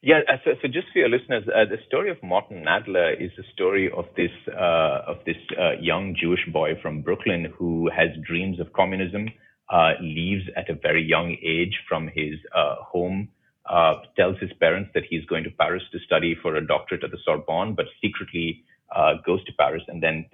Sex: male